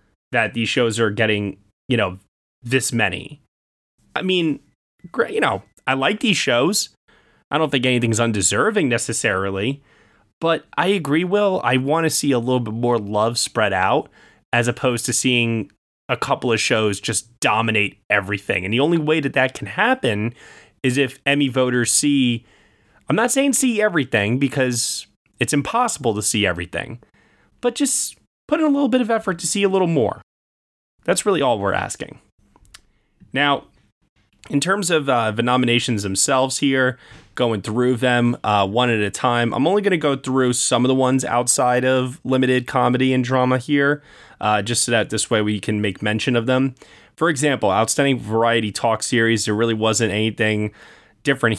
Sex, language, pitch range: male, English, 110-140 Hz